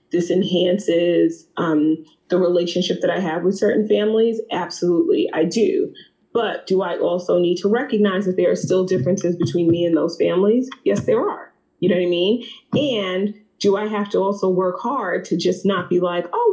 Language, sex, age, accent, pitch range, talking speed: English, female, 30-49, American, 175-225 Hz, 190 wpm